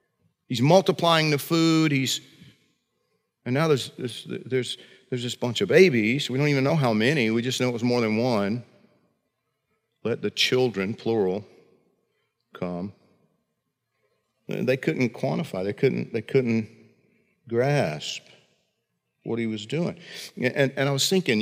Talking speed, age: 145 wpm, 50-69